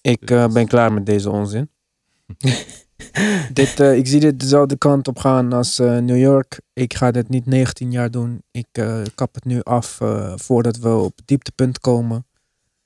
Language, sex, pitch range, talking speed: Dutch, male, 115-195 Hz, 180 wpm